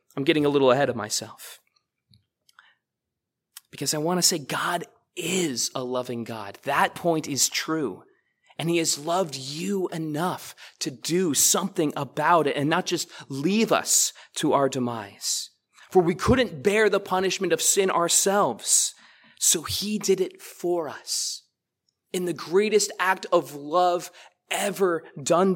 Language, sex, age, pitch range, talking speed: English, male, 20-39, 155-205 Hz, 150 wpm